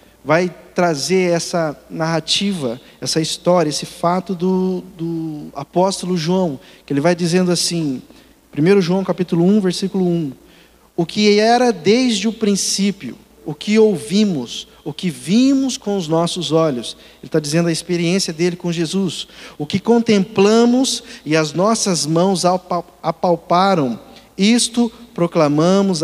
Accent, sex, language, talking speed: Brazilian, male, Portuguese, 130 wpm